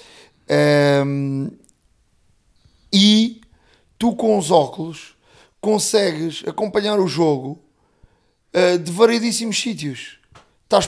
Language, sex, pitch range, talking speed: Portuguese, male, 145-180 Hz, 85 wpm